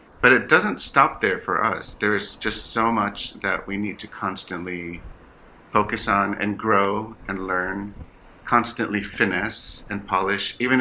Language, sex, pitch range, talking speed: English, male, 100-110 Hz, 155 wpm